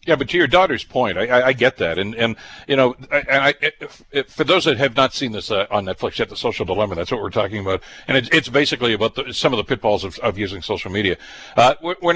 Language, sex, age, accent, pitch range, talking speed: English, male, 60-79, American, 115-150 Hz, 270 wpm